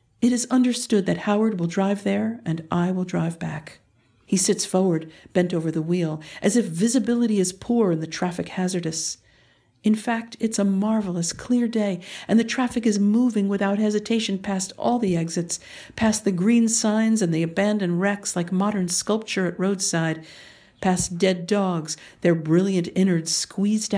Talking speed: 170 wpm